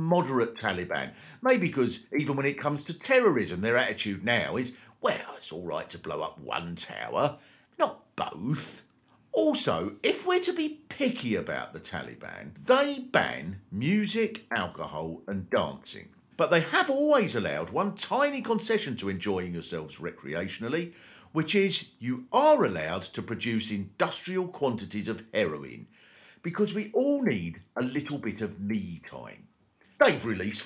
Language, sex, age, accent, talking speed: English, male, 50-69, British, 145 wpm